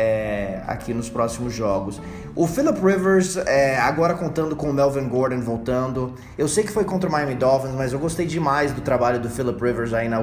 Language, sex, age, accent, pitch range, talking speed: Portuguese, male, 20-39, Brazilian, 120-150 Hz, 205 wpm